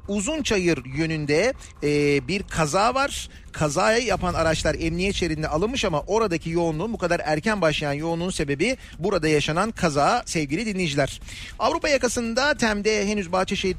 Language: Turkish